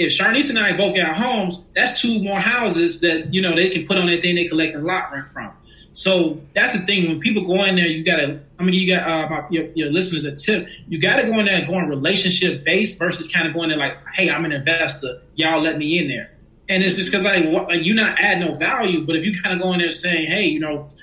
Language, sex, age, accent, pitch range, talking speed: English, male, 20-39, American, 155-185 Hz, 275 wpm